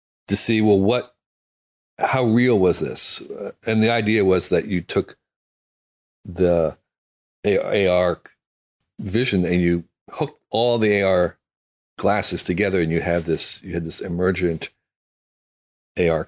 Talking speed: 130 wpm